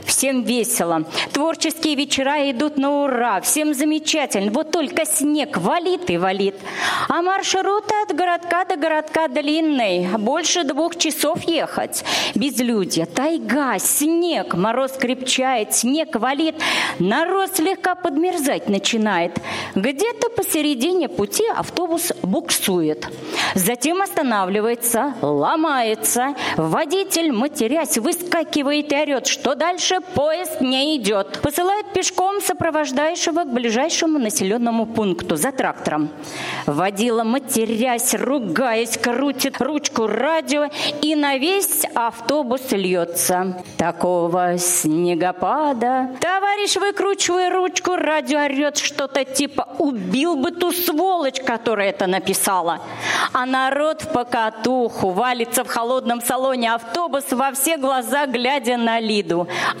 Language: Russian